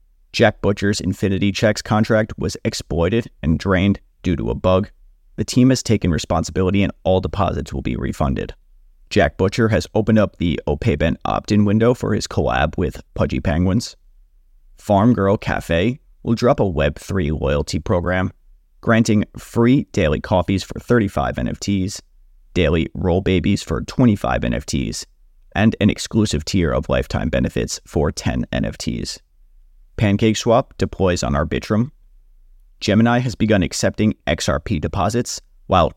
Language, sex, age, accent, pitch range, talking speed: English, male, 30-49, American, 80-110 Hz, 140 wpm